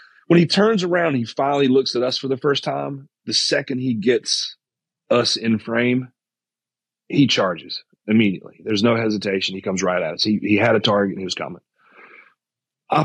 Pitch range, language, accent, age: 105-125 Hz, English, American, 30-49